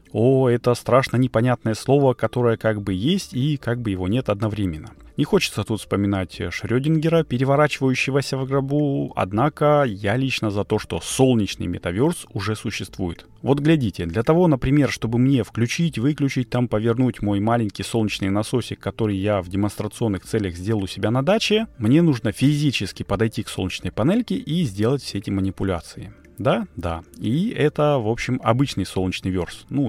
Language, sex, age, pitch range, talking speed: Russian, male, 30-49, 100-135 Hz, 160 wpm